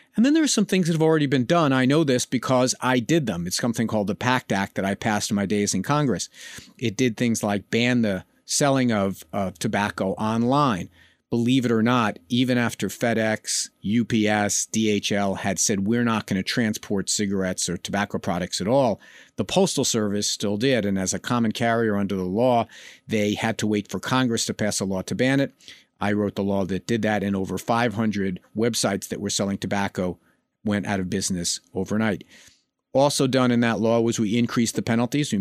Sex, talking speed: male, 205 wpm